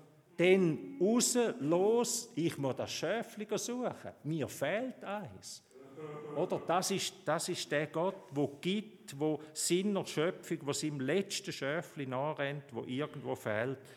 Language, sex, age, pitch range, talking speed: German, male, 50-69, 130-175 Hz, 135 wpm